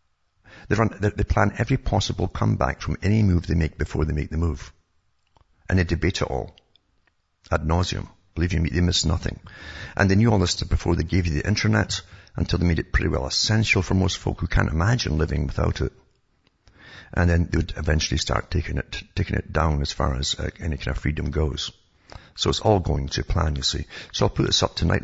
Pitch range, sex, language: 80-100 Hz, male, English